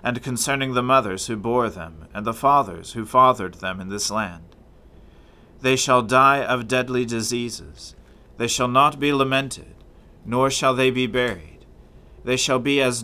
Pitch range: 90-125 Hz